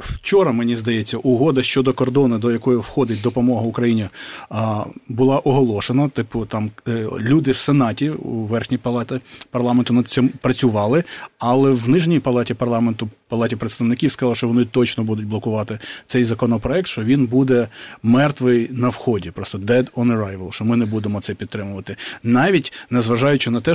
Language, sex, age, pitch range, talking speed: Ukrainian, male, 30-49, 110-130 Hz, 150 wpm